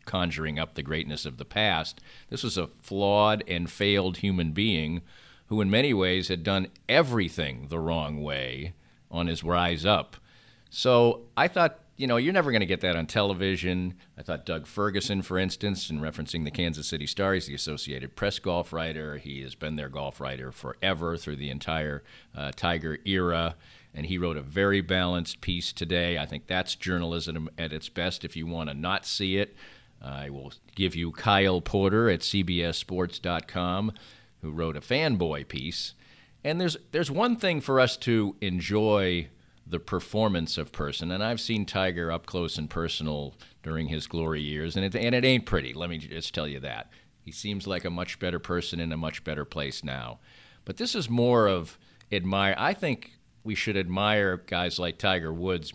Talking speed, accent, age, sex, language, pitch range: 185 wpm, American, 50-69, male, English, 80-105 Hz